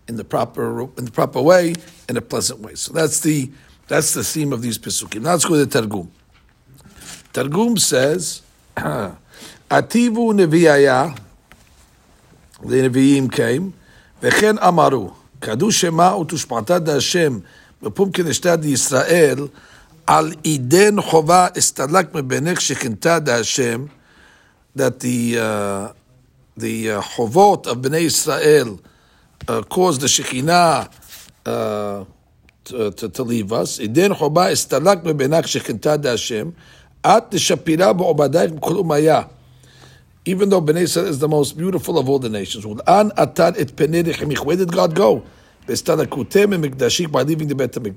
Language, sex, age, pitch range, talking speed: English, male, 60-79, 120-175 Hz, 105 wpm